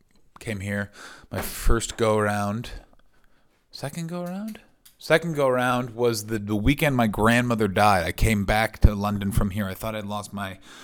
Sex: male